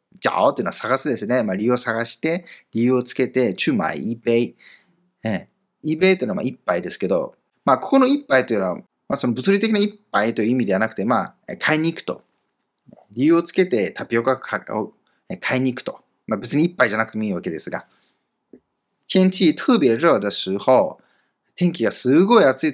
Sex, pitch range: male, 115-175 Hz